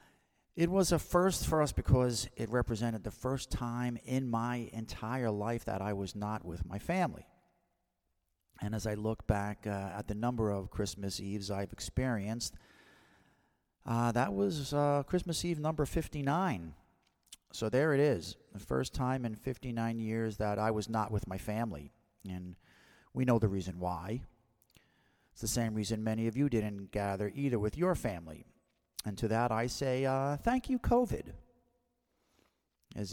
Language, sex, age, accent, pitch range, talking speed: English, male, 40-59, American, 100-120 Hz, 165 wpm